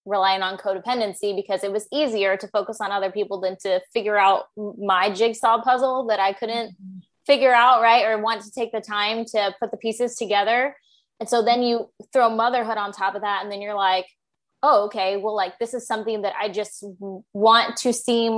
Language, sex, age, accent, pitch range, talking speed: English, female, 20-39, American, 195-230 Hz, 205 wpm